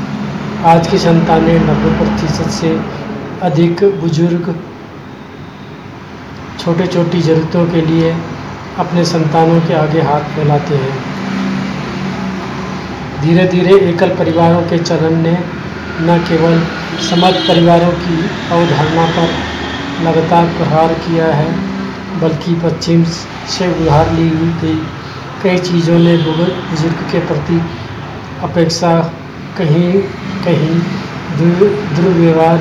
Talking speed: 105 wpm